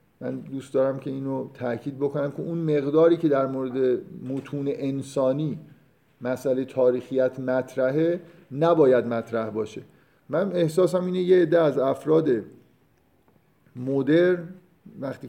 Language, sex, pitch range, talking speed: Persian, male, 125-145 Hz, 120 wpm